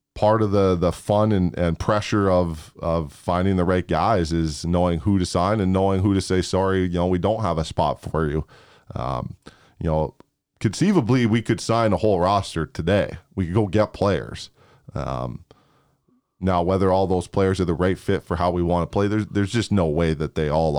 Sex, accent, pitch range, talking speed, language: male, American, 85-100 Hz, 215 wpm, English